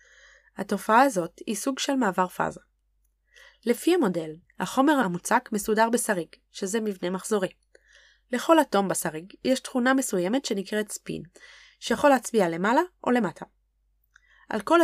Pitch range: 185-265 Hz